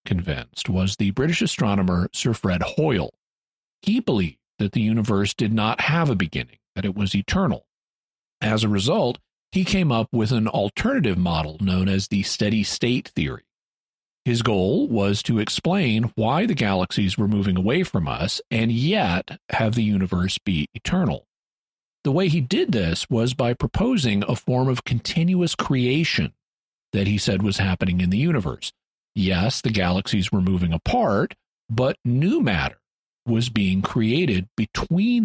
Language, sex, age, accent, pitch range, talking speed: English, male, 50-69, American, 95-120 Hz, 155 wpm